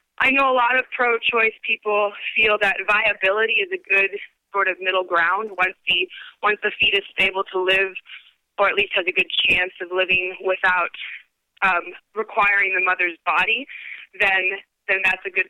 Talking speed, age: 180 wpm, 20-39